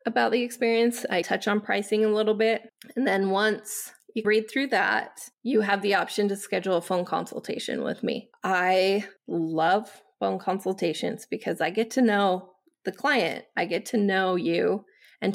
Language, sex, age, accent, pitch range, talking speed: English, female, 20-39, American, 185-230 Hz, 175 wpm